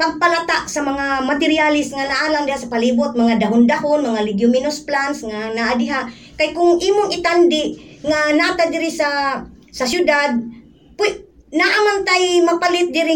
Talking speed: 135 wpm